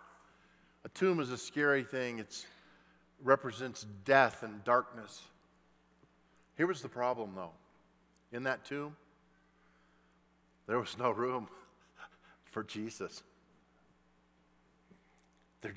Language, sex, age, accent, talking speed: English, male, 50-69, American, 100 wpm